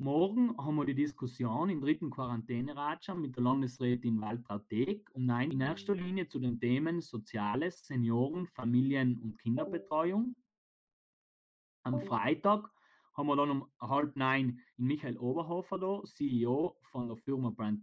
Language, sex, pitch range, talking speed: German, male, 120-160 Hz, 135 wpm